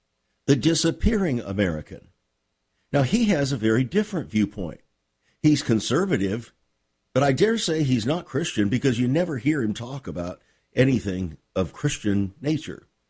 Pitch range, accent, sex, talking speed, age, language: 105-145 Hz, American, male, 135 wpm, 50-69, English